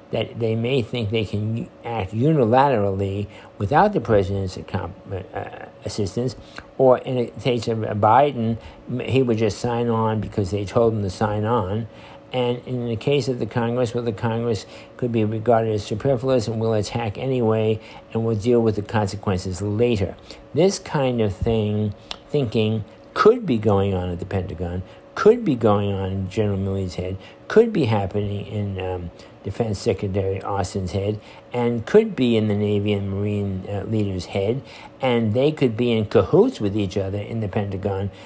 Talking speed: 170 wpm